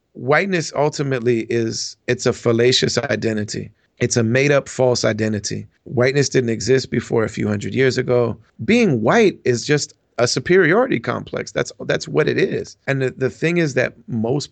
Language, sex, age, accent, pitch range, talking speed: English, male, 40-59, American, 115-135 Hz, 170 wpm